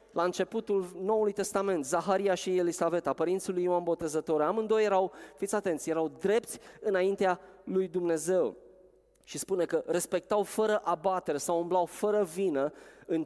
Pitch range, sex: 170-210 Hz, male